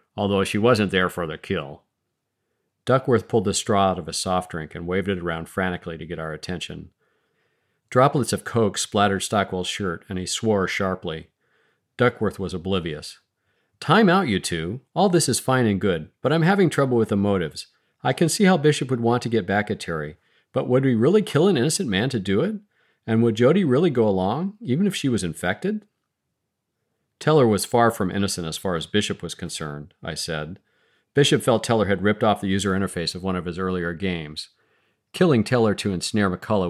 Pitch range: 90-115 Hz